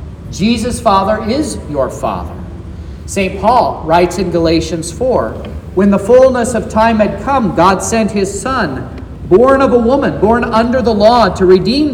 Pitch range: 185-255 Hz